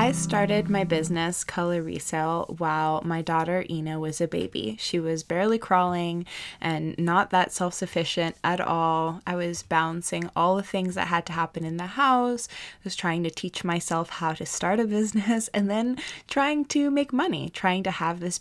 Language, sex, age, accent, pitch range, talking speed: English, female, 20-39, American, 155-180 Hz, 185 wpm